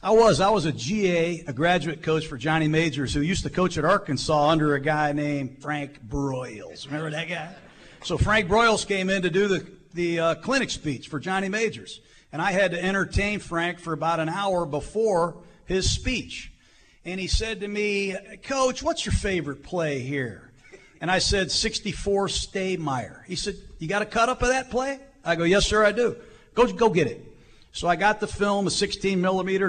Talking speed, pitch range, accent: 200 wpm, 150-200 Hz, American